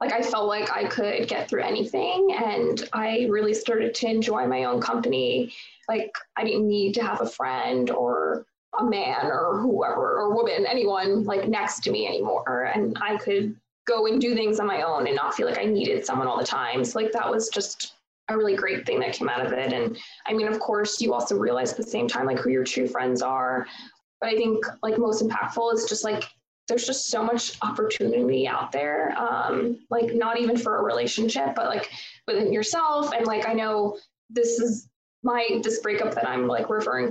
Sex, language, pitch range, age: female, English, 210-245 Hz, 10-29